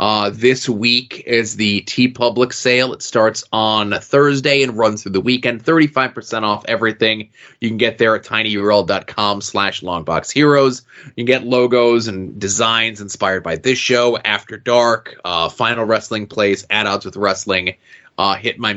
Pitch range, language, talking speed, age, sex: 110-125 Hz, English, 165 wpm, 20-39, male